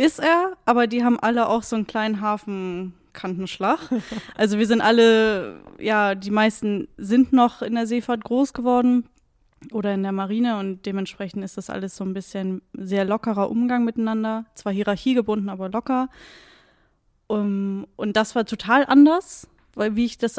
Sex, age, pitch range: female, 10-29, 205-235 Hz